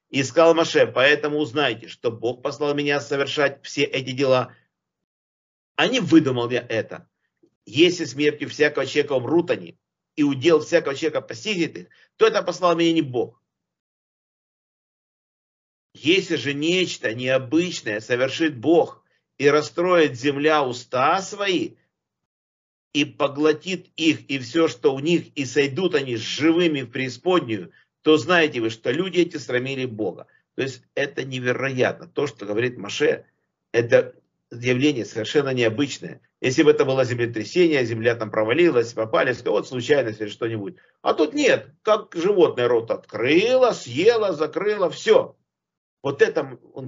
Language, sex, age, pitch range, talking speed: Russian, male, 50-69, 130-180 Hz, 140 wpm